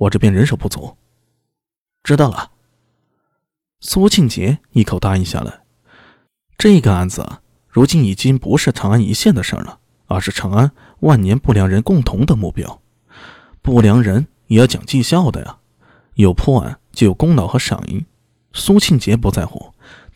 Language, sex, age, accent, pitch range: Chinese, male, 20-39, native, 105-150 Hz